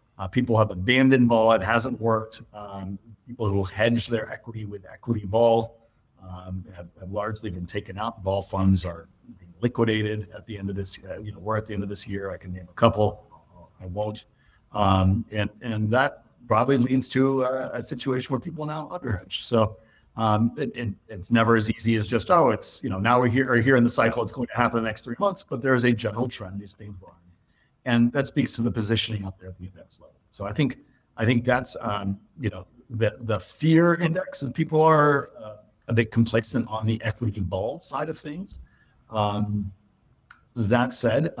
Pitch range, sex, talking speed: 105-125 Hz, male, 215 wpm